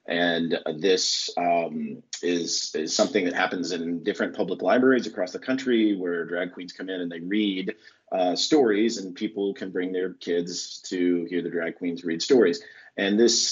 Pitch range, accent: 90-115 Hz, American